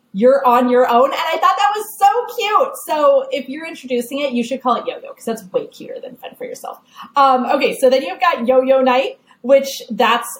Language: English